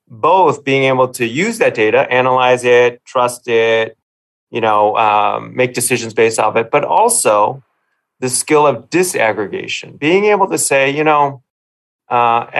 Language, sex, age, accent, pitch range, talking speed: English, male, 30-49, American, 115-150 Hz, 150 wpm